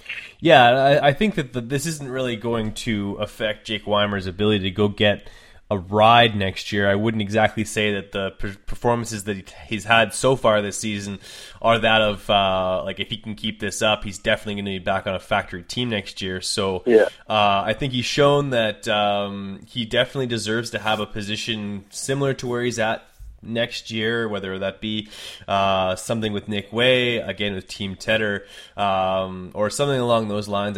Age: 20-39